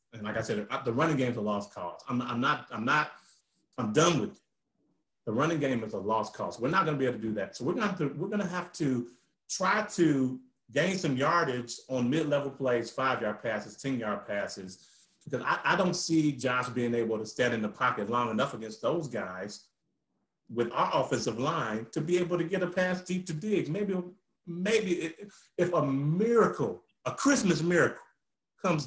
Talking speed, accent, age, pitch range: 200 wpm, American, 30-49, 120-185 Hz